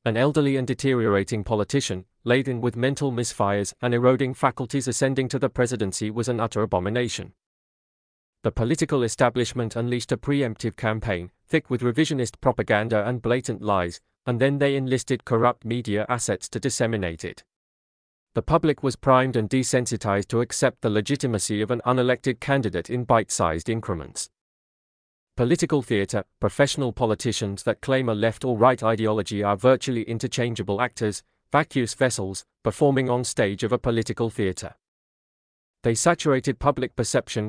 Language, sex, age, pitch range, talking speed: English, male, 40-59, 105-130 Hz, 140 wpm